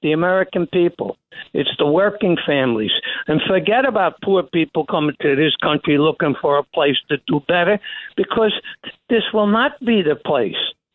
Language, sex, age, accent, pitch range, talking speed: English, male, 60-79, American, 160-230 Hz, 165 wpm